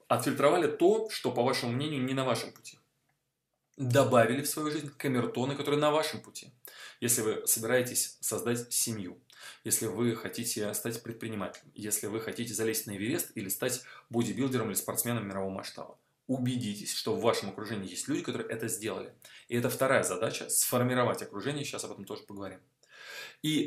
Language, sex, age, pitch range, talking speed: Russian, male, 20-39, 110-140 Hz, 160 wpm